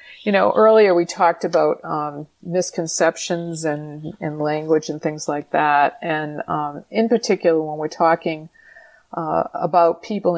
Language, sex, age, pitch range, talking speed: English, female, 50-69, 160-195 Hz, 145 wpm